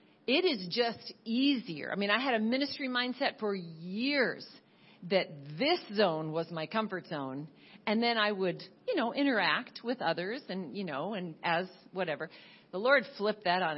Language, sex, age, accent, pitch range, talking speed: English, female, 50-69, American, 185-255 Hz, 175 wpm